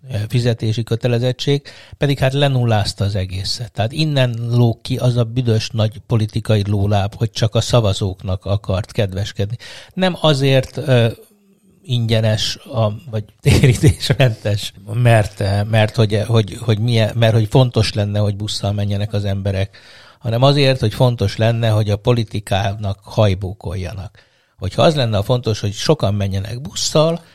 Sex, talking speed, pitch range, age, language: male, 145 wpm, 105-135 Hz, 60-79, Hungarian